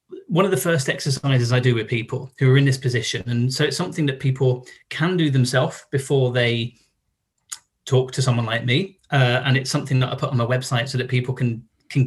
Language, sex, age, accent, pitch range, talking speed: English, male, 30-49, British, 120-140 Hz, 225 wpm